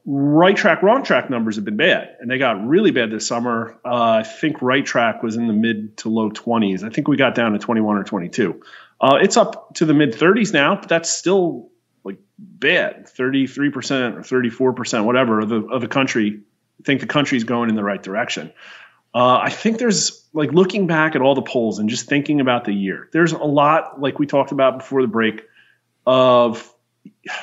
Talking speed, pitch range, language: 210 wpm, 115-155 Hz, English